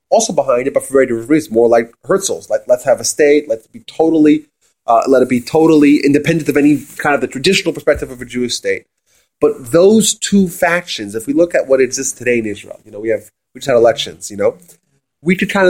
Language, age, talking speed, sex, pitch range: English, 30-49, 235 wpm, male, 130-180 Hz